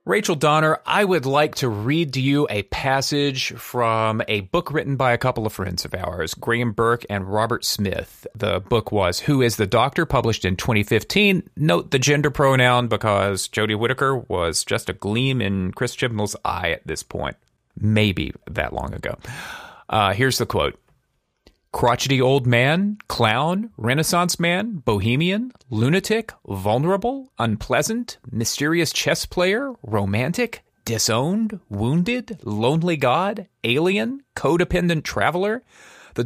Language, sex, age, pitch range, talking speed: English, male, 30-49, 110-160 Hz, 140 wpm